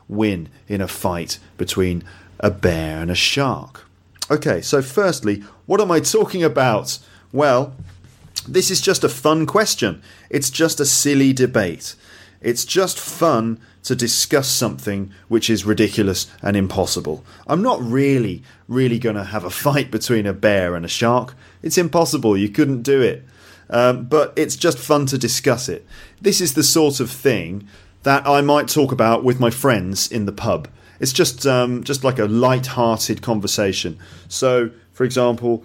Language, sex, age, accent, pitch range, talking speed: English, male, 30-49, British, 105-135 Hz, 165 wpm